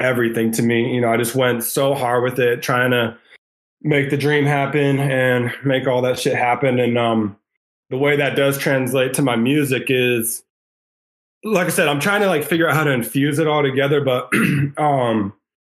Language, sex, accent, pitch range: English, male, American, 120-145 Hz